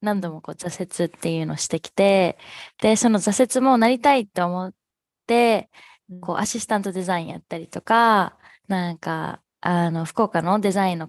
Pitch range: 175-225 Hz